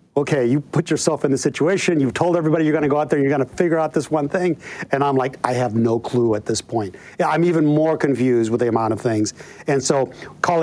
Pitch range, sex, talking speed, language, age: 130-160 Hz, male, 265 wpm, English, 50-69